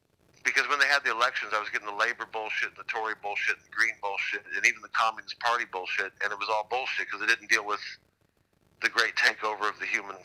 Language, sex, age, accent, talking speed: English, male, 50-69, American, 235 wpm